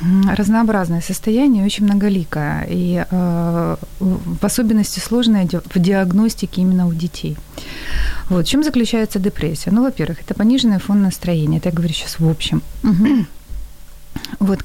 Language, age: Ukrainian, 30-49